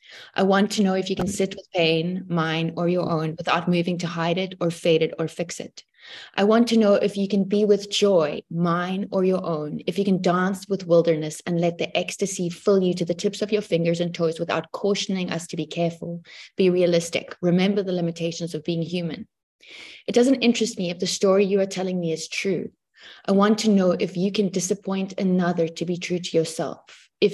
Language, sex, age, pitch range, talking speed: English, female, 20-39, 170-195 Hz, 220 wpm